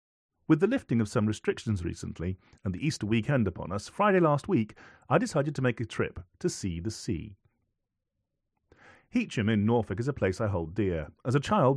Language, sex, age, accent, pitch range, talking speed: English, male, 40-59, British, 95-140 Hz, 195 wpm